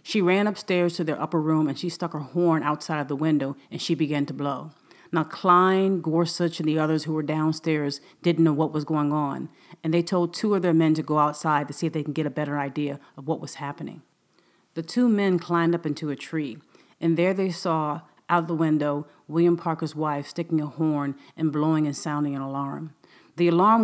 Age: 40-59